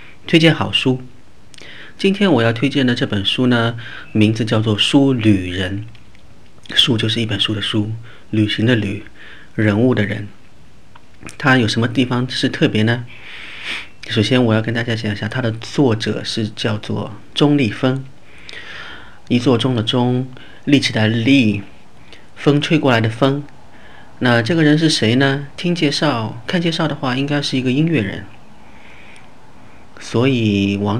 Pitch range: 110-130 Hz